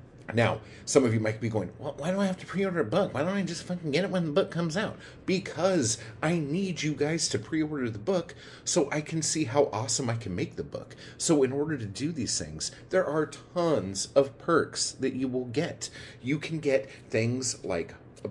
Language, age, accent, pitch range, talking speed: English, 30-49, American, 115-155 Hz, 230 wpm